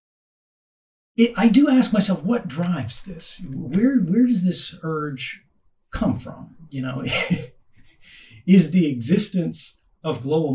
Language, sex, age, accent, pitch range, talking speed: English, male, 30-49, American, 115-170 Hz, 120 wpm